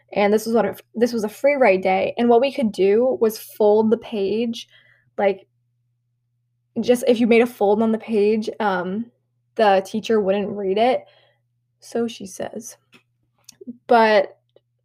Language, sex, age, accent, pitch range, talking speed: English, female, 10-29, American, 195-245 Hz, 160 wpm